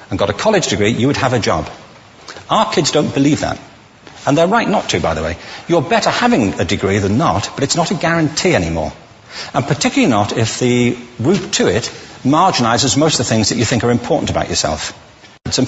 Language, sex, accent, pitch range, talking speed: English, male, British, 110-150 Hz, 220 wpm